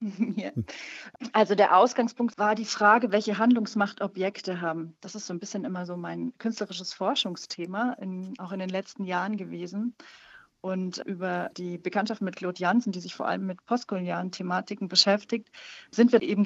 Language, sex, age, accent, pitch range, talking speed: German, female, 40-59, German, 180-225 Hz, 170 wpm